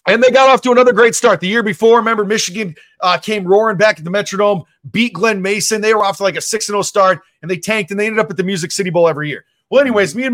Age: 30-49